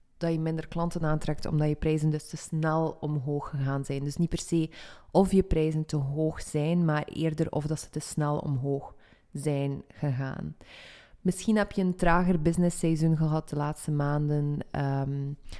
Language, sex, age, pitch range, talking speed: Dutch, female, 20-39, 150-165 Hz, 175 wpm